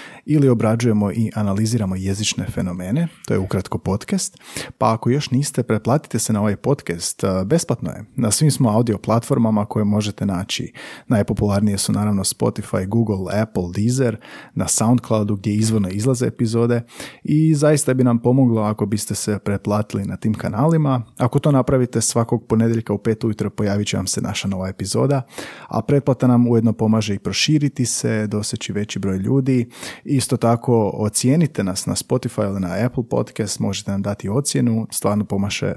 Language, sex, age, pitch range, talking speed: Croatian, male, 30-49, 105-125 Hz, 165 wpm